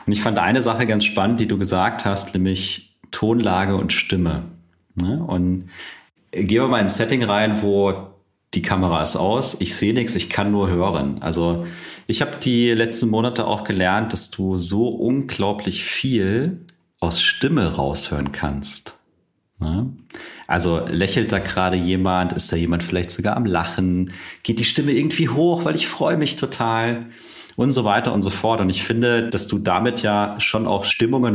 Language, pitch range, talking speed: German, 90-115 Hz, 170 wpm